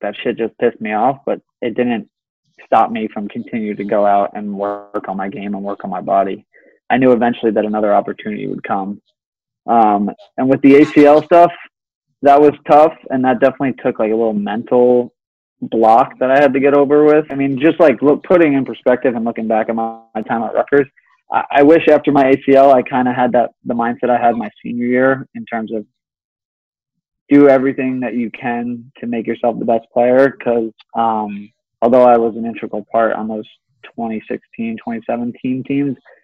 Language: English